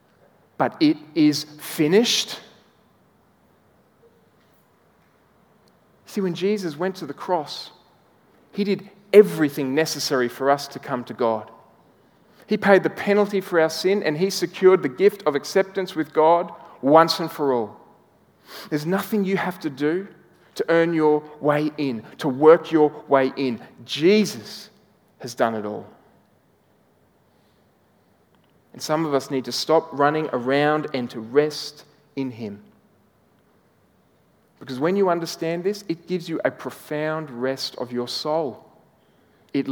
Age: 40-59